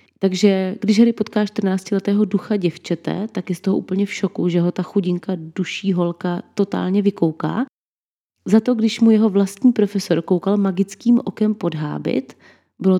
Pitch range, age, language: 170-200 Hz, 30-49, Czech